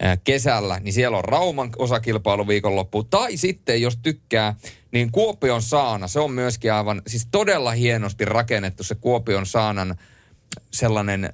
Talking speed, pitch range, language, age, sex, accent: 140 wpm, 95-120 Hz, Finnish, 30-49, male, native